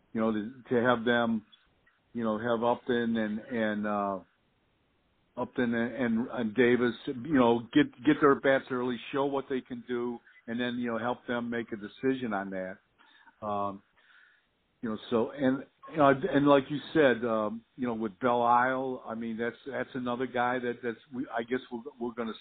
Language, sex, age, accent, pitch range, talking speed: English, male, 50-69, American, 115-135 Hz, 195 wpm